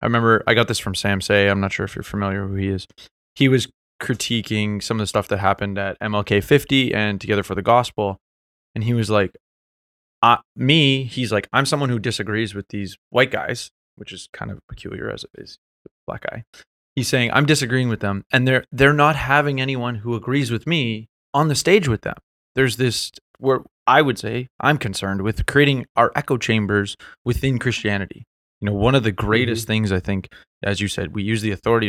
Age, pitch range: 20-39, 100-130 Hz